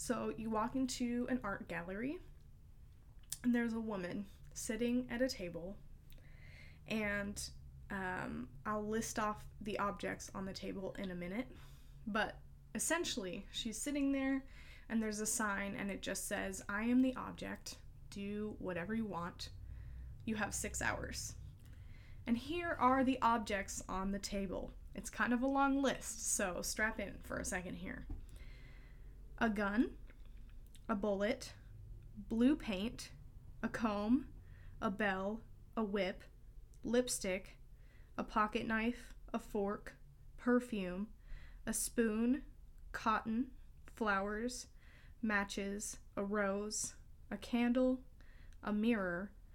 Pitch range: 200-240 Hz